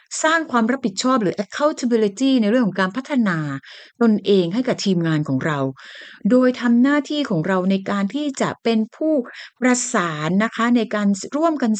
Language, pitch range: Thai, 175-255 Hz